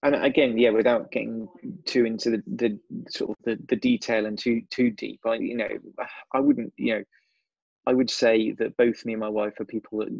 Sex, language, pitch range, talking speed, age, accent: male, English, 105-120 Hz, 220 wpm, 20-39, British